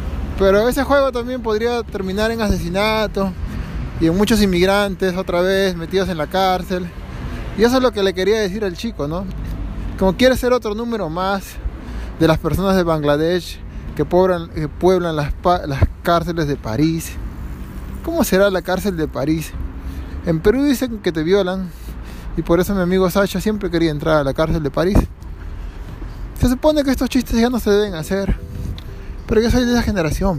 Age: 30-49